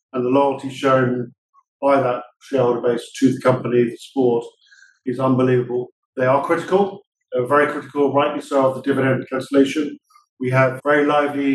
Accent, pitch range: British, 130-145 Hz